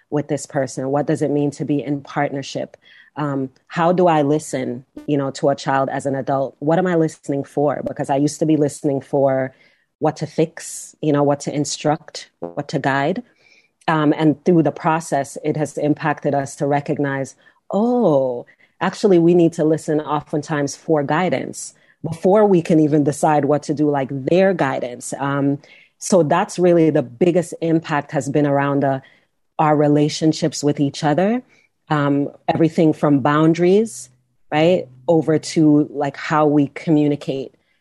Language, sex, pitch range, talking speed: English, female, 145-175 Hz, 165 wpm